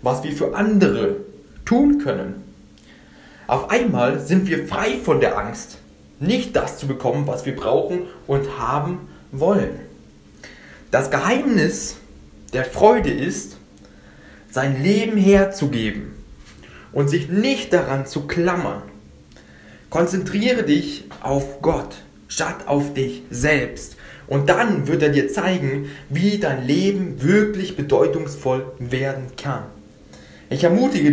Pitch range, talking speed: 115-175 Hz, 120 wpm